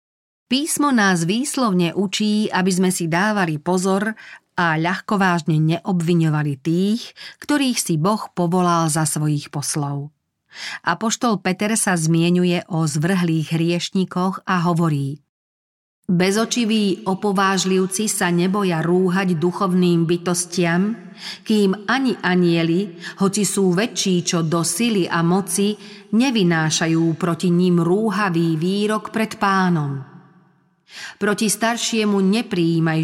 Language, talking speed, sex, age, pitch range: Slovak, 105 wpm, female, 40-59, 165-200 Hz